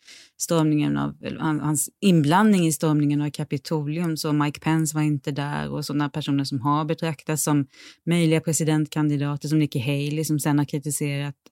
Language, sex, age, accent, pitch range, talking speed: Swedish, female, 30-49, native, 150-200 Hz, 155 wpm